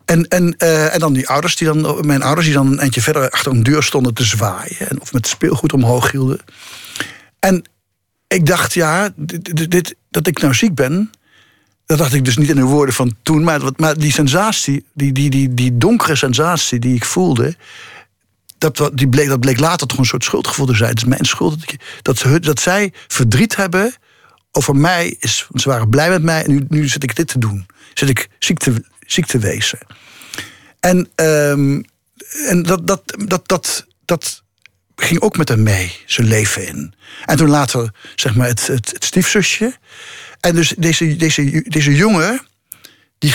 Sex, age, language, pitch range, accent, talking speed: male, 60-79, Dutch, 125-165 Hz, Dutch, 195 wpm